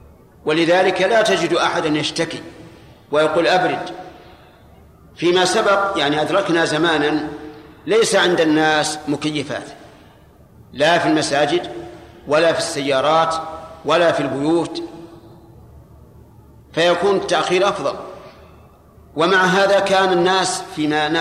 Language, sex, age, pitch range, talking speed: Arabic, male, 50-69, 150-185 Hz, 95 wpm